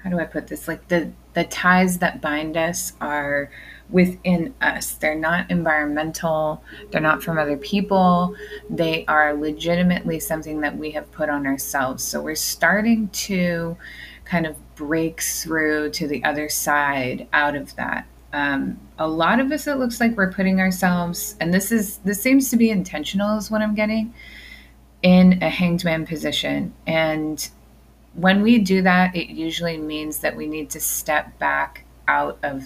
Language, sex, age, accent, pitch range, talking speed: English, female, 30-49, American, 150-190 Hz, 170 wpm